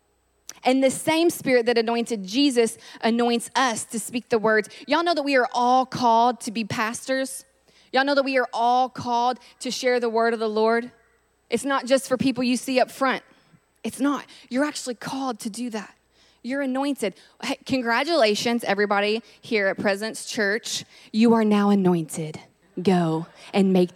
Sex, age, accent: female, 20-39, American